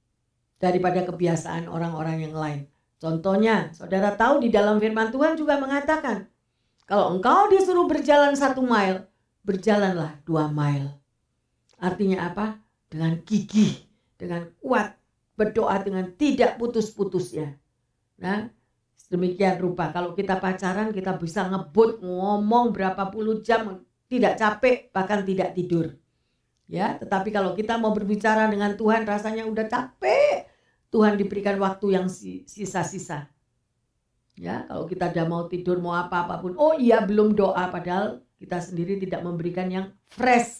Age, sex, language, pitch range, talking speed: 50-69, female, Indonesian, 170-215 Hz, 130 wpm